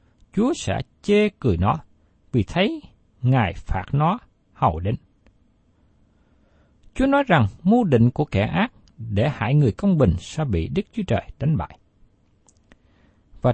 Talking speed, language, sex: 145 wpm, Vietnamese, male